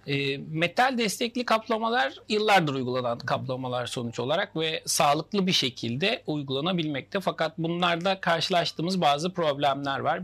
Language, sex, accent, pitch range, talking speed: Turkish, male, native, 135-185 Hz, 110 wpm